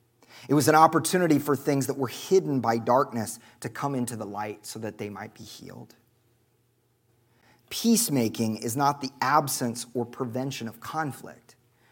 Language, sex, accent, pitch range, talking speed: English, male, American, 115-135 Hz, 155 wpm